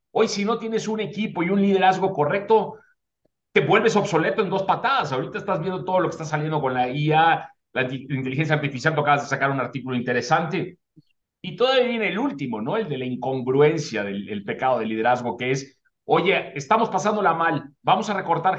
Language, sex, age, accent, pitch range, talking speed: Spanish, male, 40-59, Mexican, 150-205 Hz, 195 wpm